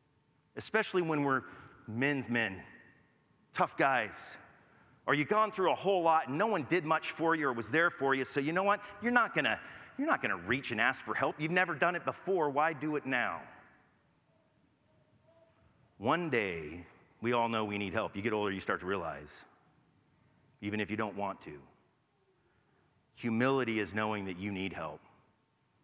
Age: 40-59